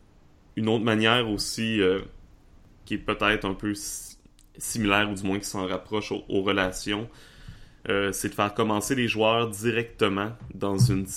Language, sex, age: French, male, 20-39